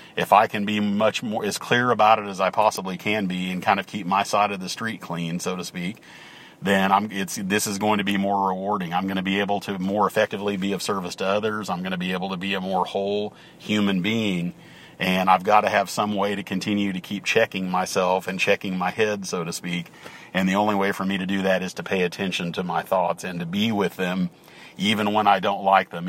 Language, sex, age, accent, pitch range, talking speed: English, male, 40-59, American, 95-100 Hz, 255 wpm